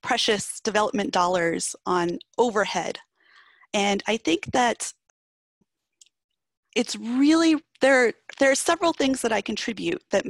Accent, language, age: American, English, 30-49